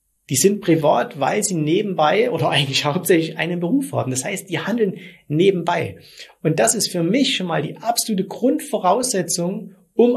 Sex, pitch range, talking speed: male, 155-215 Hz, 165 wpm